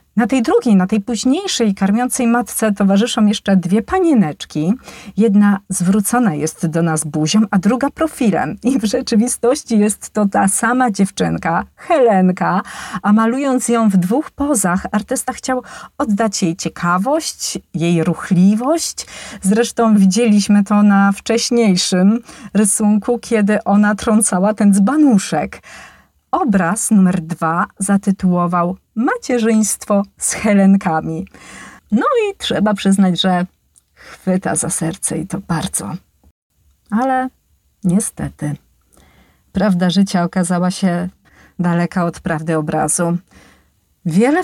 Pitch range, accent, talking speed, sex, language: 175-225 Hz, native, 110 wpm, female, Polish